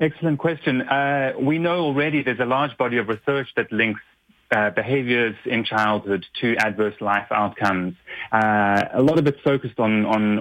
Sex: male